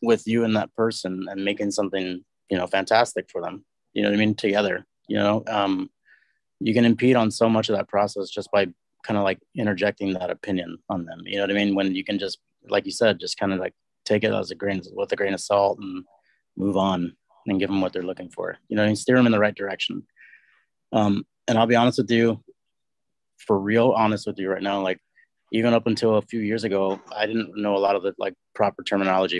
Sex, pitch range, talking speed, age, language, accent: male, 95-110 Hz, 240 wpm, 30-49, English, American